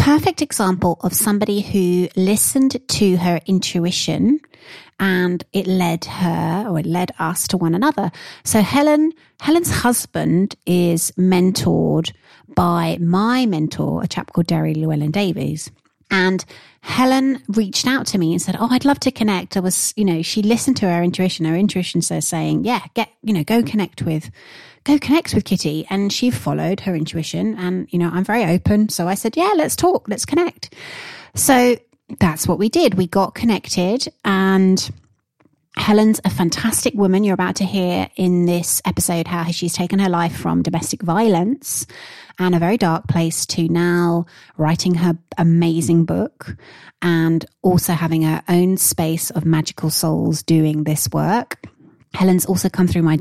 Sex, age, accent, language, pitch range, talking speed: female, 30-49, British, English, 170-215 Hz, 165 wpm